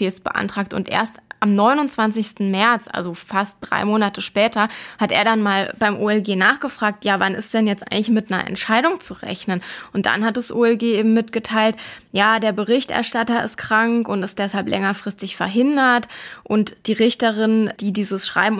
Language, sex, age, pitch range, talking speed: German, female, 20-39, 195-225 Hz, 170 wpm